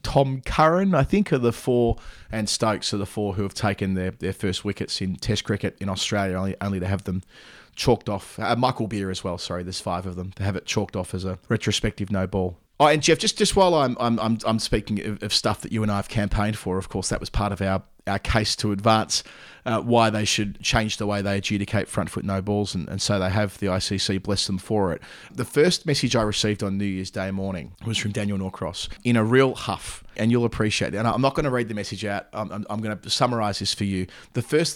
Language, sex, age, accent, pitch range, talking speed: English, male, 30-49, Australian, 100-120 Hz, 255 wpm